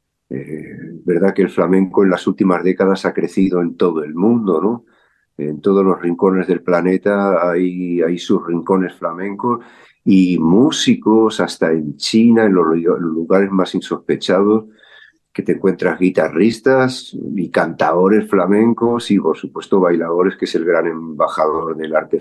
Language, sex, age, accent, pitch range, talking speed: Spanish, male, 50-69, Spanish, 90-105 Hz, 150 wpm